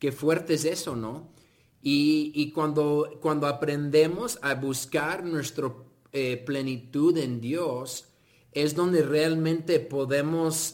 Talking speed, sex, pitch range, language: 110 wpm, male, 130-155 Hz, Spanish